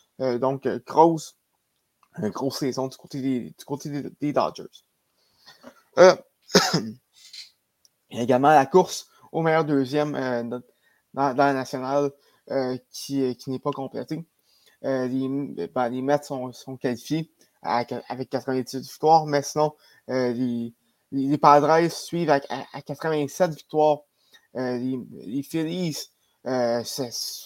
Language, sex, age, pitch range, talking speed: French, male, 20-39, 130-155 Hz, 145 wpm